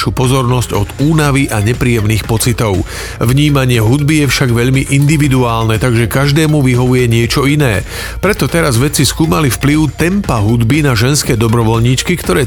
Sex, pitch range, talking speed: male, 115-145 Hz, 135 wpm